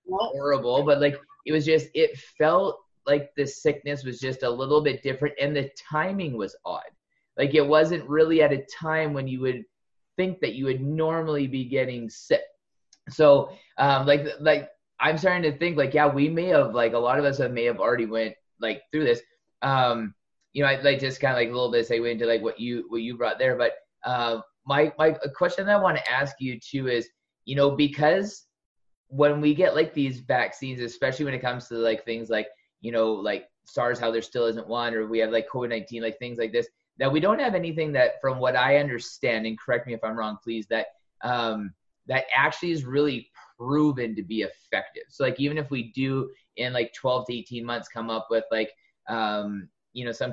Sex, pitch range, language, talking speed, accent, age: male, 115-150 Hz, English, 220 wpm, American, 20-39